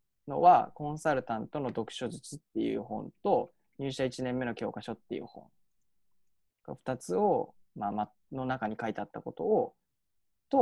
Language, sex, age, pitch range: Japanese, male, 20-39, 115-190 Hz